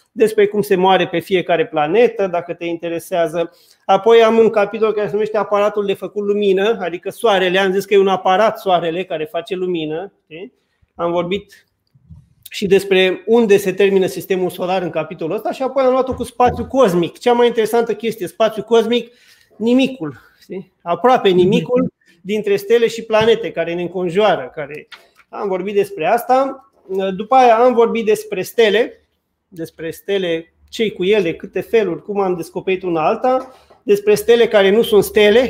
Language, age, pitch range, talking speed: Romanian, 30-49, 180-230 Hz, 160 wpm